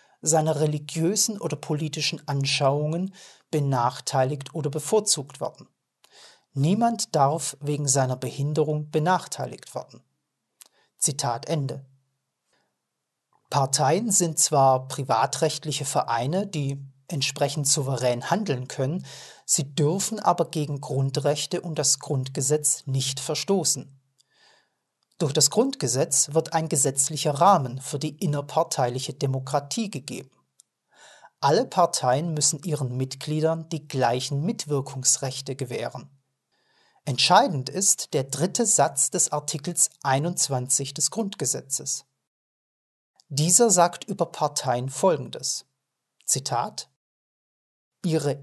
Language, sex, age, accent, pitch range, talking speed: German, male, 40-59, German, 135-165 Hz, 95 wpm